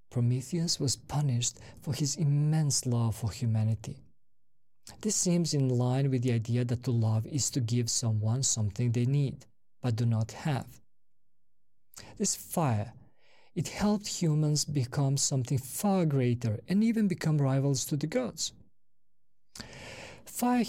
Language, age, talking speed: English, 40-59, 135 wpm